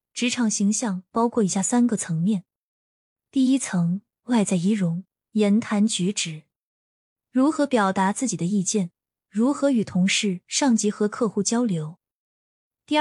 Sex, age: female, 20-39